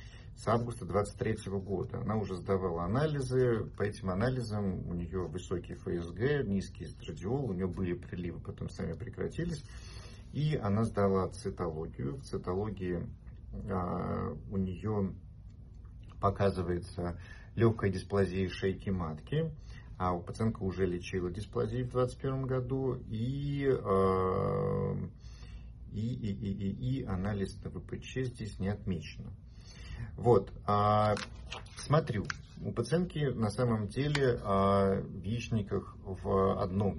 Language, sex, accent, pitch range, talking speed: Russian, male, native, 95-120 Hz, 115 wpm